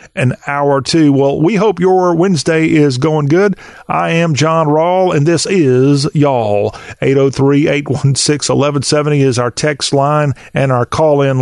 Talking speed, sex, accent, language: 145 wpm, male, American, English